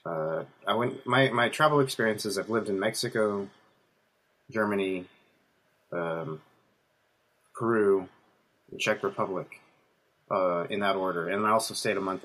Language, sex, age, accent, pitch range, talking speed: English, male, 30-49, American, 95-115 Hz, 130 wpm